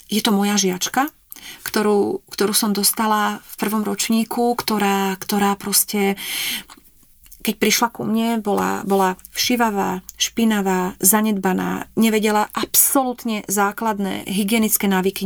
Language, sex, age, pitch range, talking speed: Slovak, female, 30-49, 195-220 Hz, 110 wpm